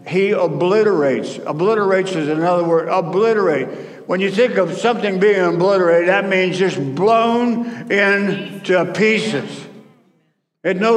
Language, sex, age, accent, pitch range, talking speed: English, male, 60-79, American, 165-220 Hz, 120 wpm